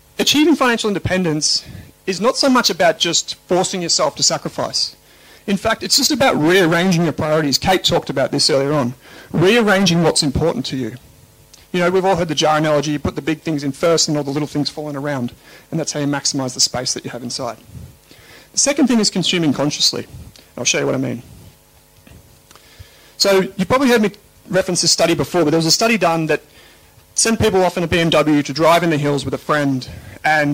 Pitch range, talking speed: 145-190 Hz, 210 wpm